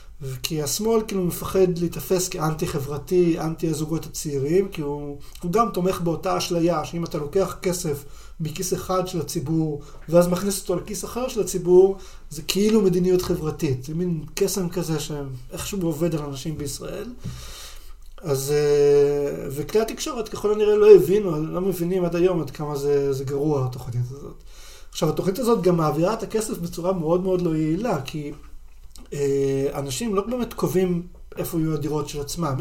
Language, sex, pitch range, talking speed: Hebrew, male, 145-190 Hz, 160 wpm